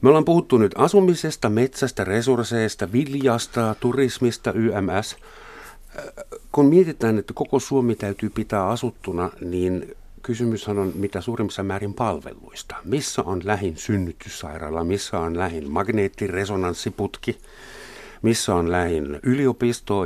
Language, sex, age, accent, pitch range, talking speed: Finnish, male, 50-69, native, 95-125 Hz, 110 wpm